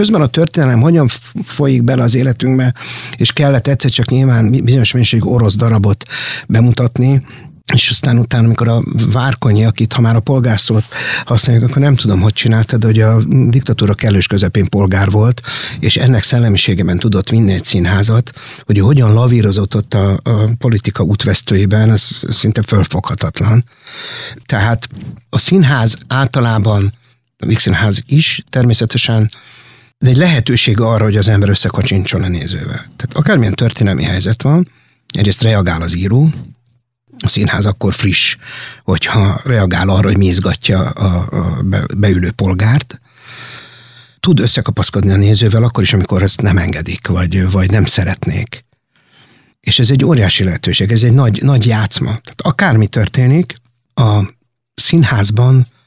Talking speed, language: 135 wpm, Hungarian